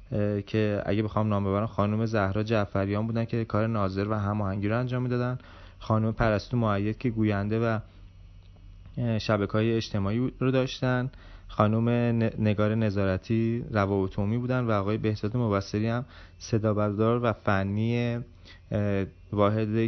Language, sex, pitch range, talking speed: Persian, male, 100-115 Hz, 135 wpm